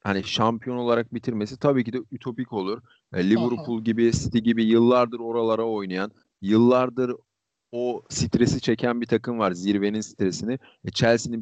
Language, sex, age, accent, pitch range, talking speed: Turkish, male, 40-59, native, 110-125 Hz, 135 wpm